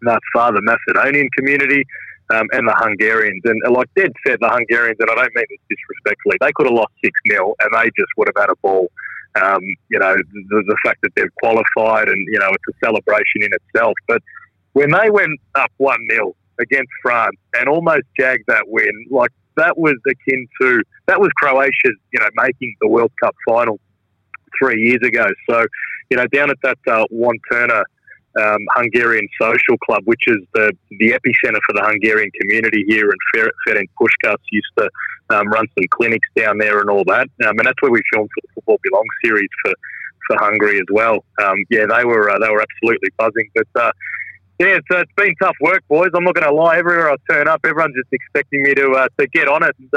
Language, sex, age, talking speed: English, male, 30-49, 210 wpm